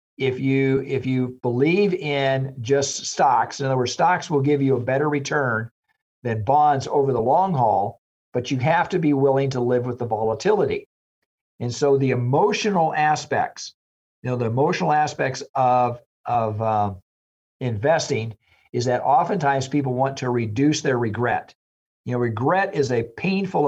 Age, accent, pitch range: 50-69, American, 115-140 Hz